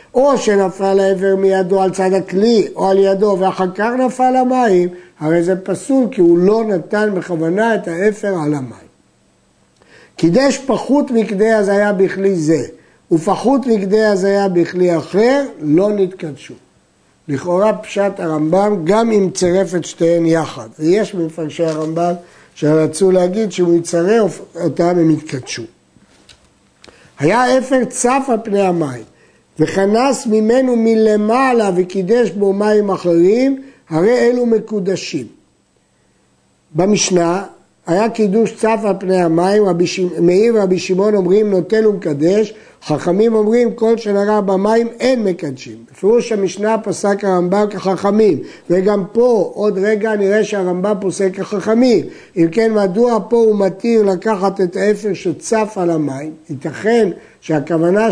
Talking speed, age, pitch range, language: 125 wpm, 60-79, 175-220 Hz, Hebrew